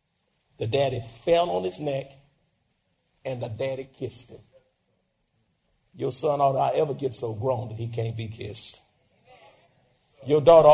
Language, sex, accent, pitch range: English, male, American, 125-185 Hz